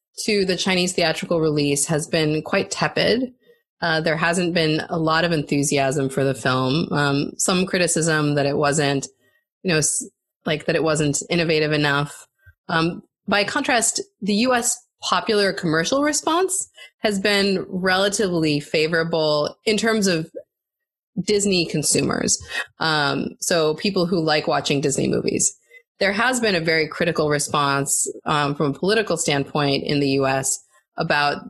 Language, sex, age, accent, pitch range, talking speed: English, female, 20-39, American, 145-185 Hz, 145 wpm